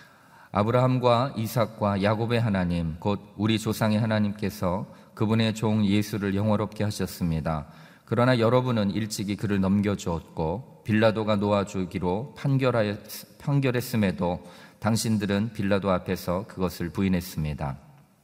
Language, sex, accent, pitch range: Korean, male, native, 85-105 Hz